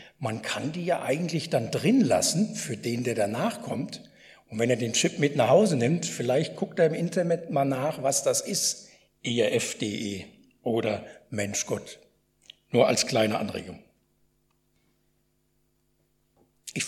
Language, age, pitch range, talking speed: German, 60-79, 135-200 Hz, 145 wpm